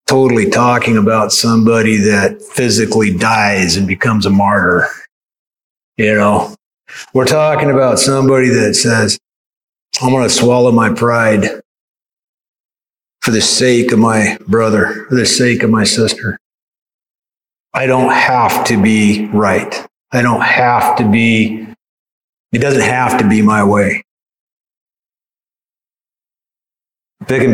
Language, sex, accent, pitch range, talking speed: English, male, American, 110-140 Hz, 120 wpm